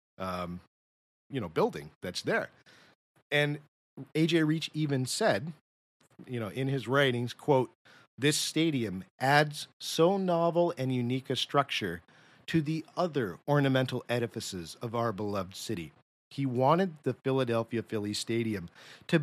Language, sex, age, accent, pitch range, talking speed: English, male, 50-69, American, 115-145 Hz, 130 wpm